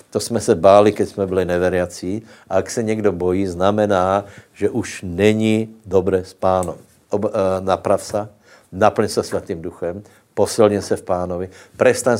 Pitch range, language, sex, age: 95-110 Hz, Slovak, male, 60-79